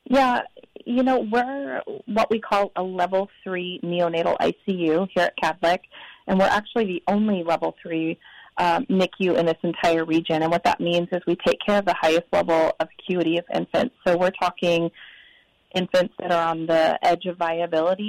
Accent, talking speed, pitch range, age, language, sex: American, 180 wpm, 165-195 Hz, 30-49, English, female